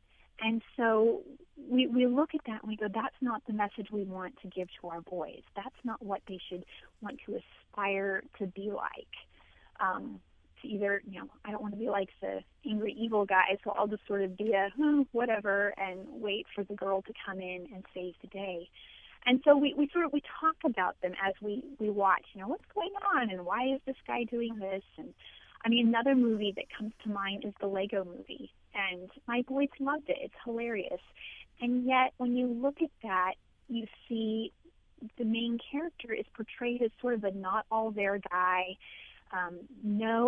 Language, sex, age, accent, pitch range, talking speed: English, female, 30-49, American, 195-250 Hz, 205 wpm